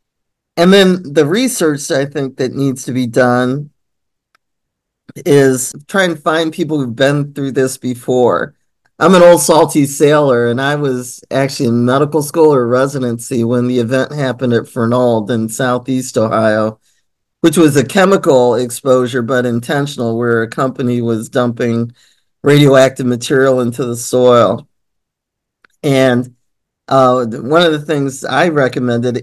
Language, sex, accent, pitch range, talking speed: English, male, American, 120-150 Hz, 140 wpm